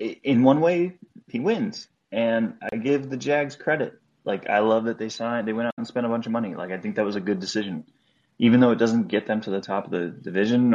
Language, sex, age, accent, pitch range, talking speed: English, male, 20-39, American, 100-120 Hz, 255 wpm